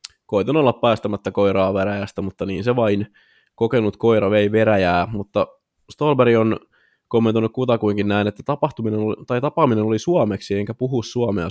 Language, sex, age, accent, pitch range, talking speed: Finnish, male, 20-39, native, 100-120 Hz, 150 wpm